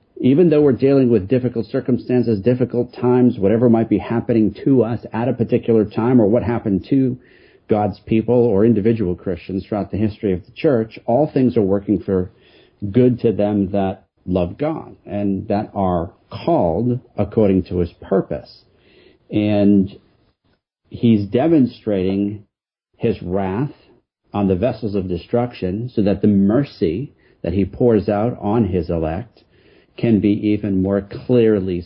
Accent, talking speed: American, 150 wpm